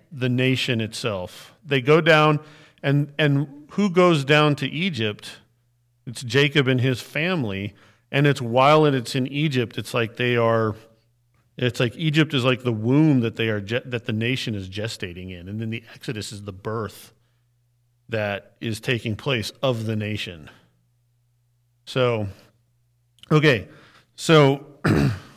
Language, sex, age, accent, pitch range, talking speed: English, male, 40-59, American, 115-140 Hz, 150 wpm